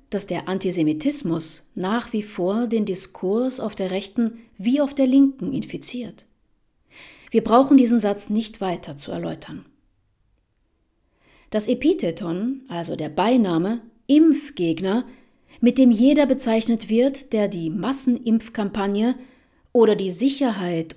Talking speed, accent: 115 wpm, German